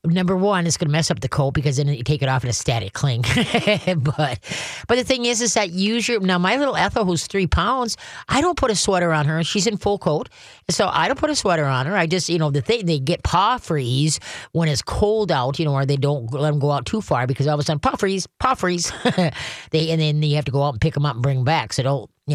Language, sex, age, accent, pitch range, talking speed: English, female, 40-59, American, 145-185 Hz, 285 wpm